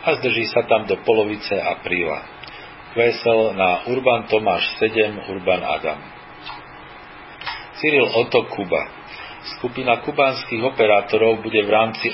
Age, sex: 40-59, male